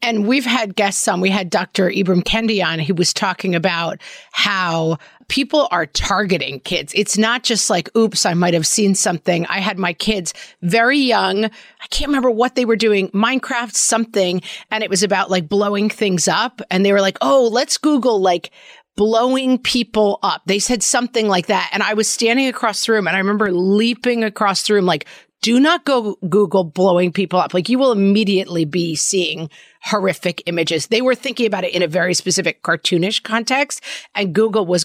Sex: female